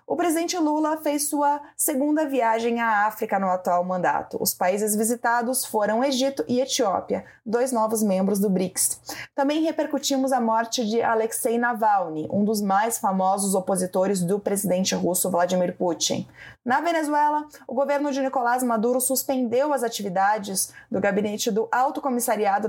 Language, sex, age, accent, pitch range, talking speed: Portuguese, female, 20-39, Brazilian, 200-270 Hz, 150 wpm